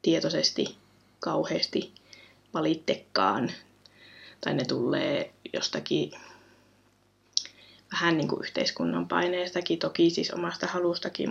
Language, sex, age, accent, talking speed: Finnish, female, 20-39, native, 85 wpm